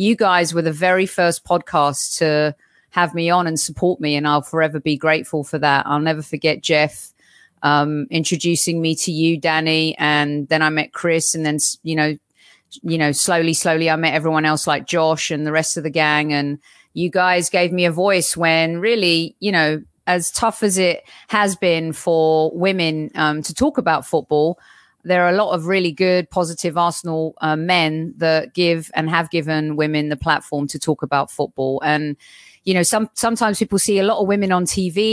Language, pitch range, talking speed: English, 150-180 Hz, 200 wpm